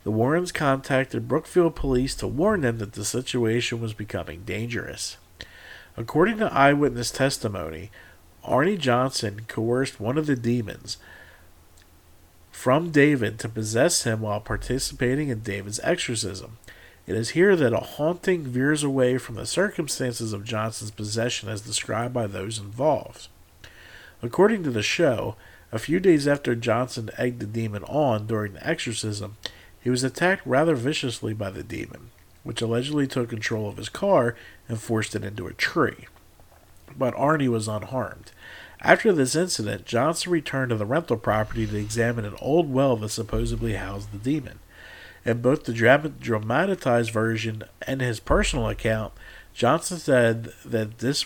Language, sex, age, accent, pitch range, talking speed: English, male, 50-69, American, 110-135 Hz, 150 wpm